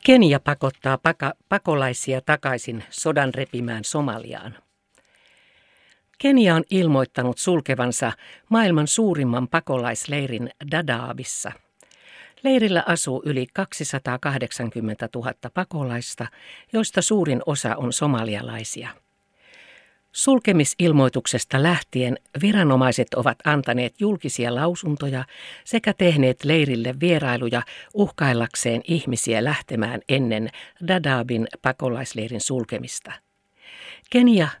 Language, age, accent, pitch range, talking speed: Finnish, 60-79, native, 125-170 Hz, 80 wpm